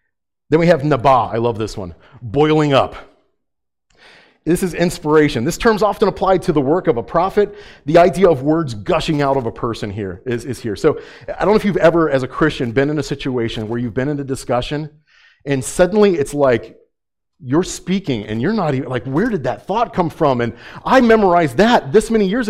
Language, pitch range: English, 120-170 Hz